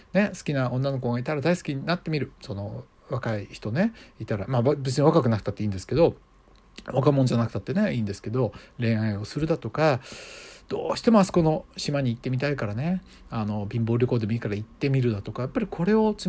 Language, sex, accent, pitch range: Japanese, male, native, 115-160 Hz